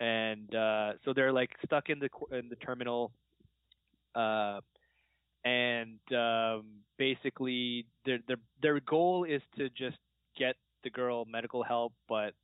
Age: 20-39